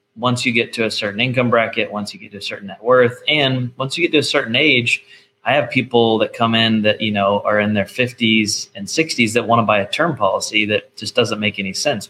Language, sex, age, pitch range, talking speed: English, male, 20-39, 105-120 Hz, 260 wpm